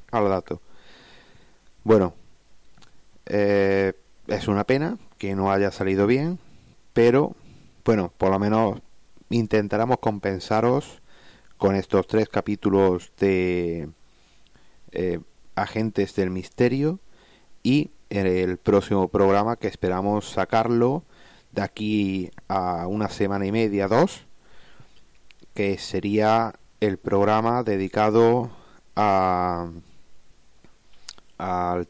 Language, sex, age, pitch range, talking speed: Spanish, male, 30-49, 95-110 Hz, 95 wpm